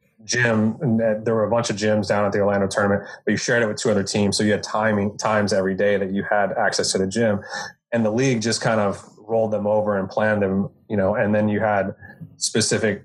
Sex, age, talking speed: male, 20-39, 250 wpm